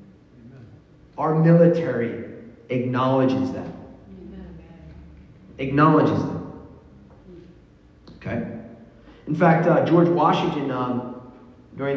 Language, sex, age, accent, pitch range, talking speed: English, male, 30-49, American, 115-155 Hz, 70 wpm